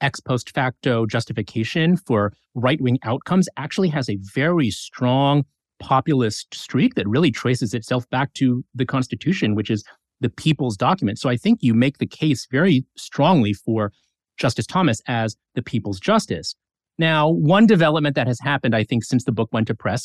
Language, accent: English, American